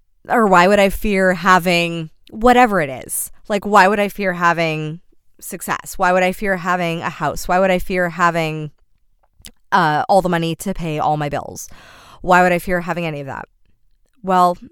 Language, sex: English, female